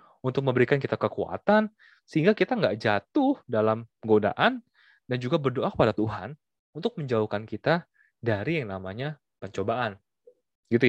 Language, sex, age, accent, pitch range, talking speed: Indonesian, male, 20-39, native, 110-160 Hz, 125 wpm